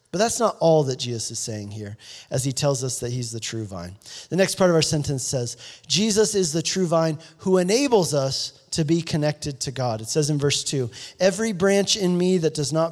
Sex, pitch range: male, 135-185 Hz